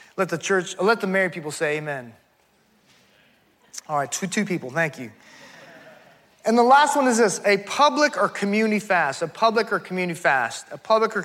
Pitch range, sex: 180-225 Hz, male